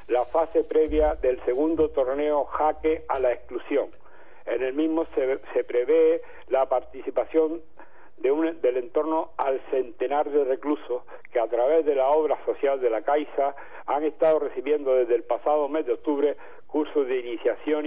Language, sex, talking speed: Spanish, male, 160 wpm